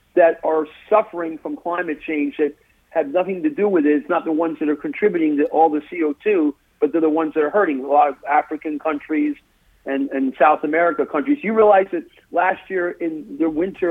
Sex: male